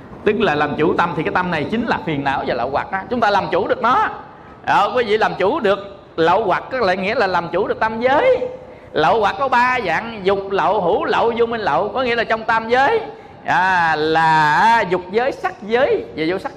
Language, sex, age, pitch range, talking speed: Vietnamese, male, 20-39, 180-250 Hz, 245 wpm